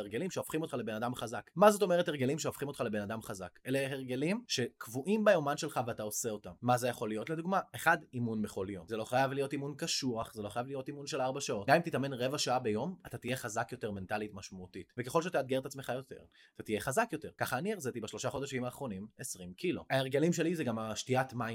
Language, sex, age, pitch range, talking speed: Hebrew, male, 20-39, 115-150 Hz, 200 wpm